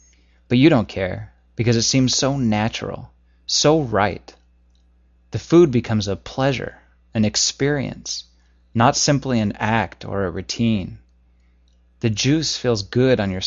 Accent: American